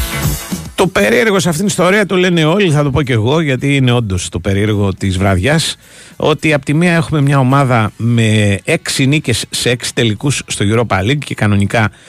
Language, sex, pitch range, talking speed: Greek, male, 105-145 Hz, 195 wpm